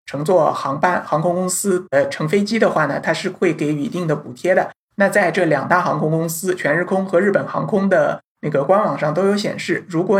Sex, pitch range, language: male, 165-215 Hz, Chinese